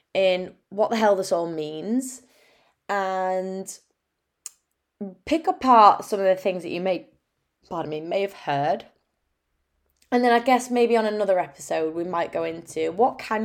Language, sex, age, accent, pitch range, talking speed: English, female, 20-39, British, 155-205 Hz, 160 wpm